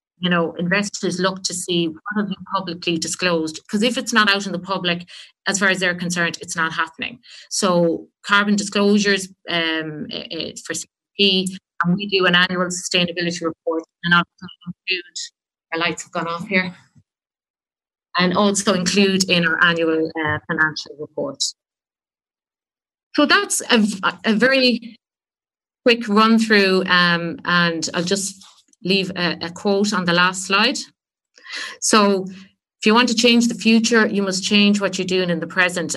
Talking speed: 160 wpm